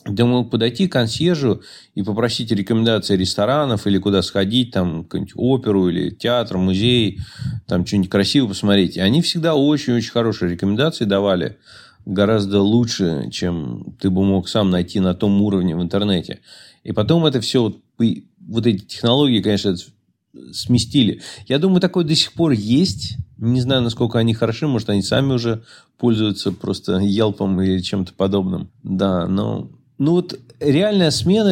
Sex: male